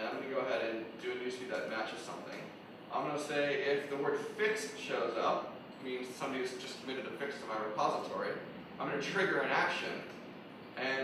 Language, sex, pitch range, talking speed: English, male, 140-190 Hz, 195 wpm